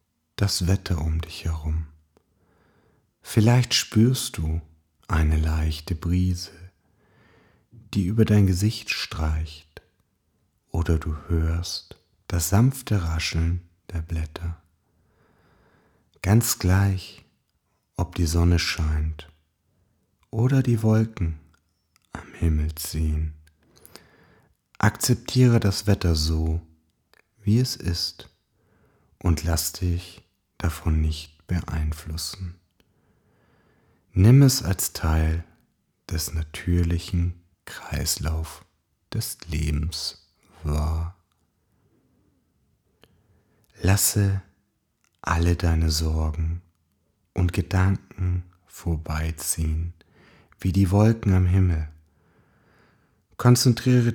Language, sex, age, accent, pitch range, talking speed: German, male, 40-59, German, 80-100 Hz, 80 wpm